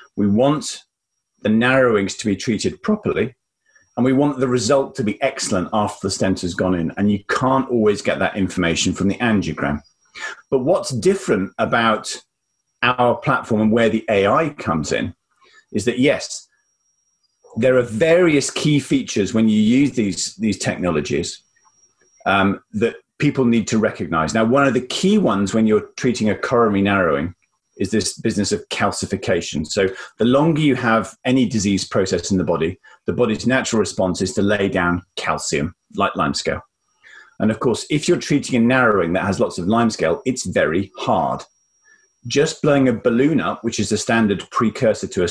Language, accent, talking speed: English, British, 175 wpm